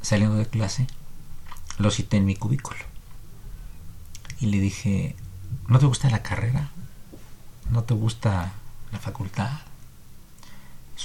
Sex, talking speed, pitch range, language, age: male, 120 wpm, 95-125 Hz, Spanish, 50-69